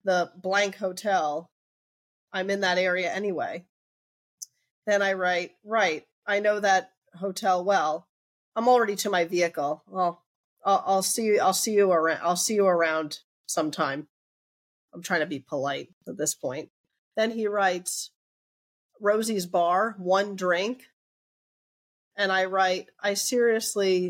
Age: 30-49